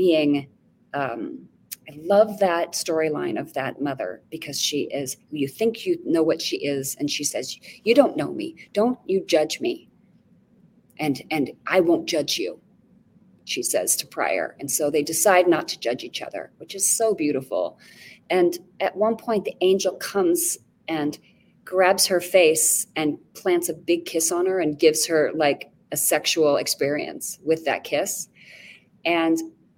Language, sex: English, female